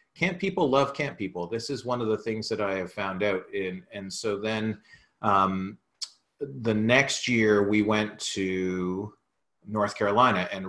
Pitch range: 95-115 Hz